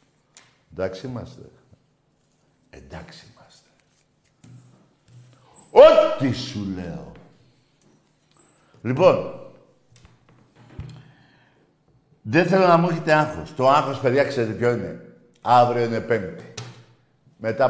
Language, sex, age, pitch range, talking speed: Greek, male, 60-79, 125-165 Hz, 80 wpm